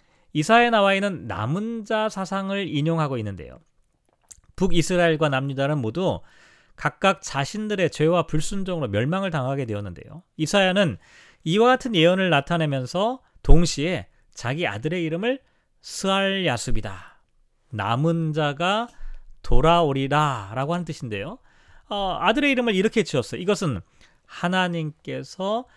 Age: 40-59